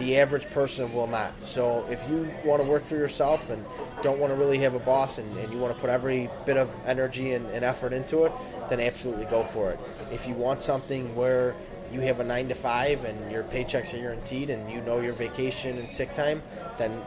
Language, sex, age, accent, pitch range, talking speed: English, male, 20-39, American, 115-140 Hz, 225 wpm